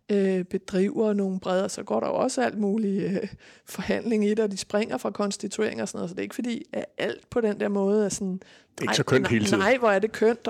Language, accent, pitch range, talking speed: Danish, native, 185-215 Hz, 250 wpm